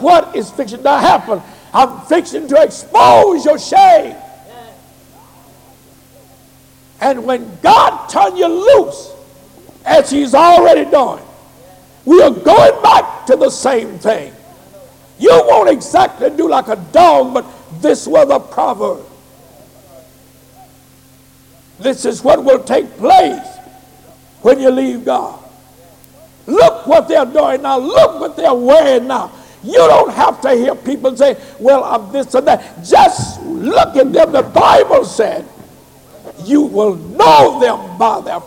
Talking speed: 135 wpm